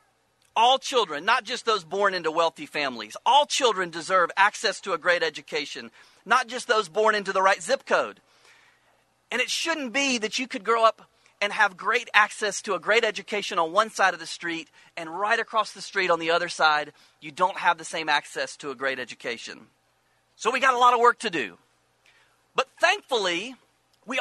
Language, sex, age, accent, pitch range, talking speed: English, male, 40-59, American, 190-250 Hz, 200 wpm